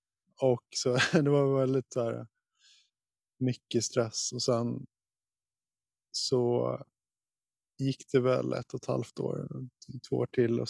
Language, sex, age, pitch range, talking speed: English, male, 20-39, 115-130 Hz, 125 wpm